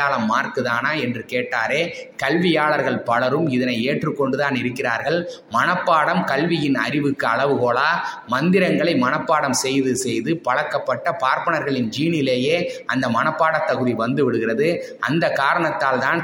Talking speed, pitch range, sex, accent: 50 wpm, 125-155 Hz, male, native